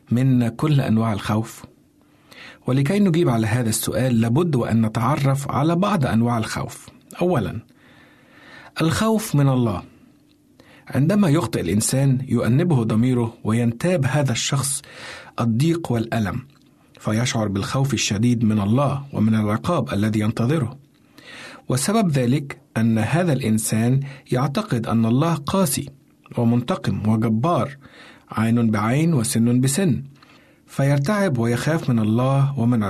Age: 50-69